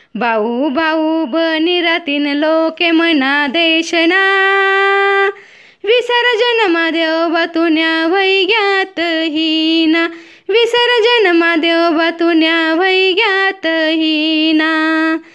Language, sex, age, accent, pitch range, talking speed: Marathi, female, 20-39, native, 325-400 Hz, 65 wpm